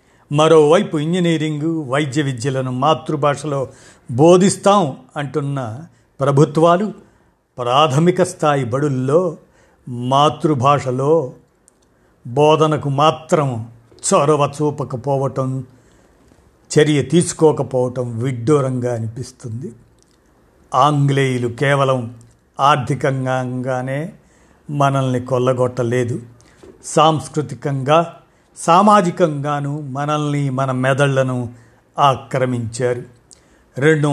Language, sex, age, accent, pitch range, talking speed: Telugu, male, 50-69, native, 130-160 Hz, 55 wpm